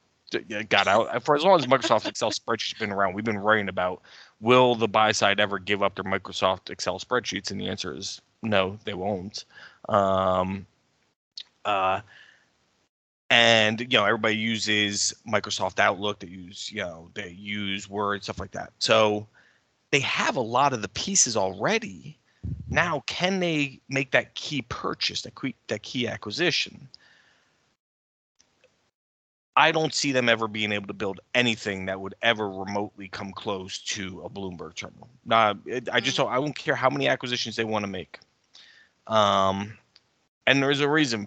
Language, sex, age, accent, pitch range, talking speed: English, male, 20-39, American, 95-115 Hz, 165 wpm